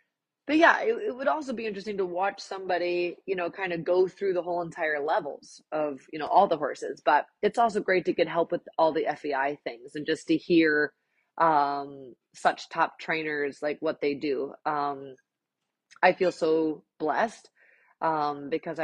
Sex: female